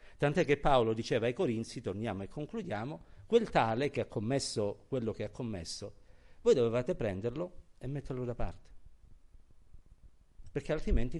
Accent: native